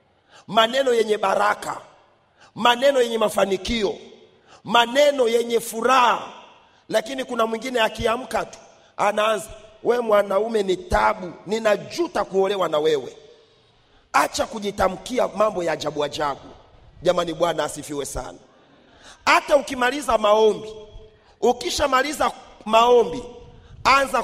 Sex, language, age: male, Swahili, 40-59